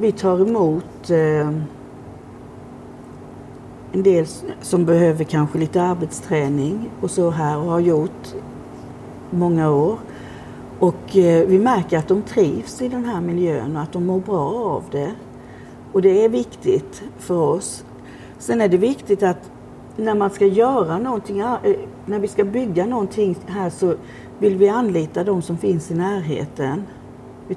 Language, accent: English, Swedish